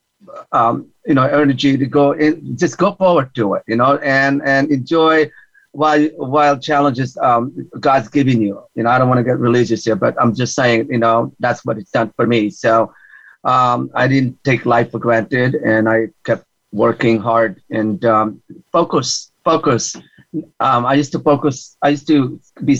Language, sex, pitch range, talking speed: English, male, 115-140 Hz, 185 wpm